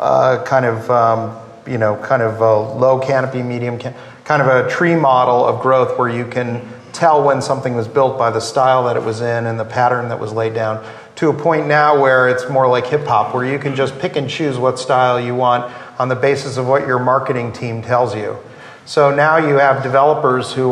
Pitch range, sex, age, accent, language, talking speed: 125-140 Hz, male, 40-59, American, English, 210 wpm